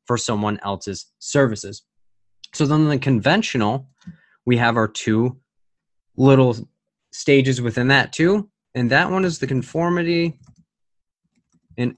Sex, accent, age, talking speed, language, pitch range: male, American, 20-39, 120 wpm, English, 105-150 Hz